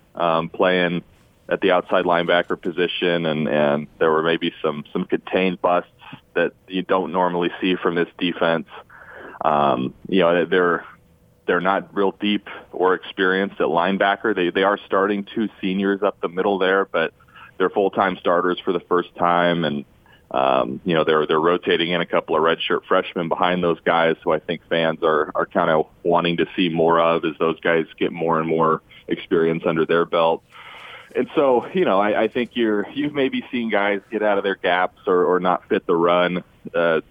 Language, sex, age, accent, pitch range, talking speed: English, male, 30-49, American, 85-95 Hz, 190 wpm